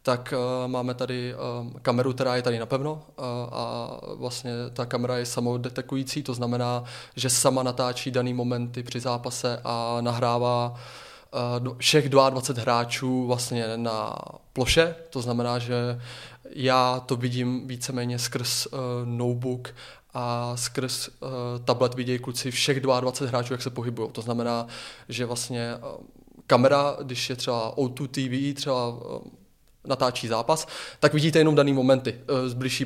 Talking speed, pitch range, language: 145 wpm, 125-135 Hz, Czech